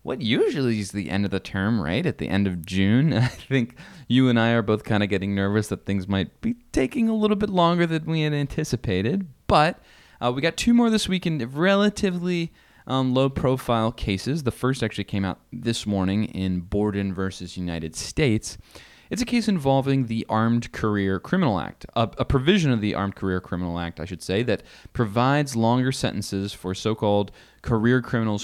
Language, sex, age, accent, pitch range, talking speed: English, male, 20-39, American, 95-135 Hz, 195 wpm